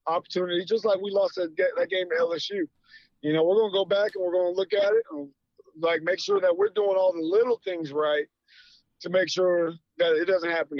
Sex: male